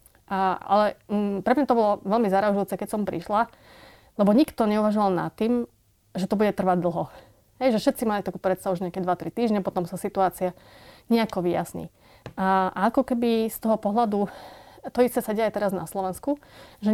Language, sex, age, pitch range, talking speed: Slovak, female, 30-49, 185-220 Hz, 190 wpm